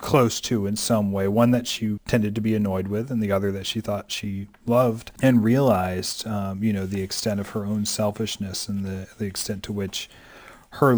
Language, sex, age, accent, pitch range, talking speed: English, male, 40-59, American, 105-135 Hz, 215 wpm